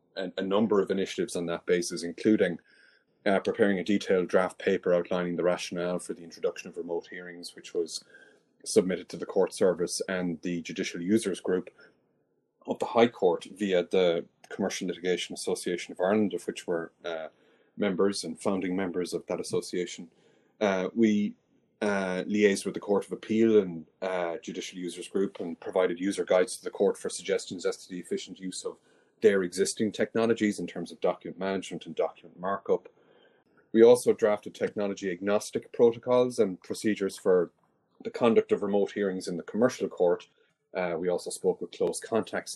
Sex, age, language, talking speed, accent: male, 30-49, English, 170 wpm, Irish